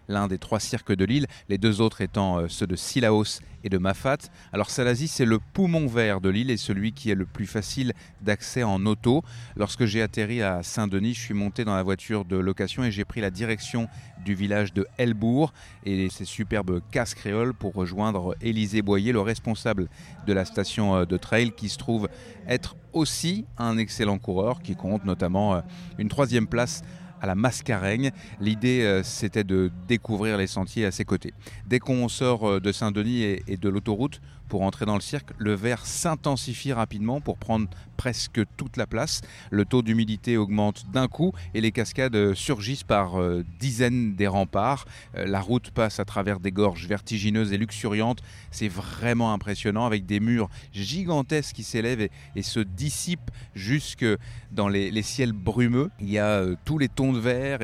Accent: French